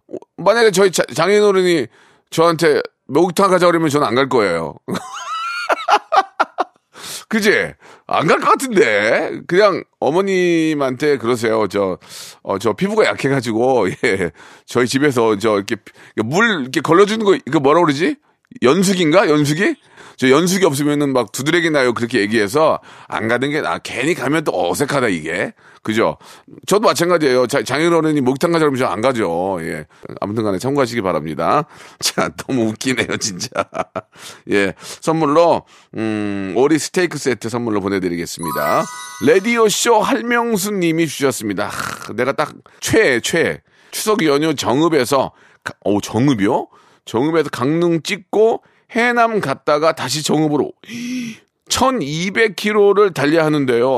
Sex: male